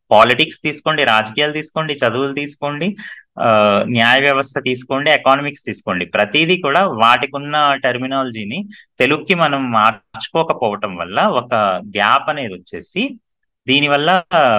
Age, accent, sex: 30-49, native, male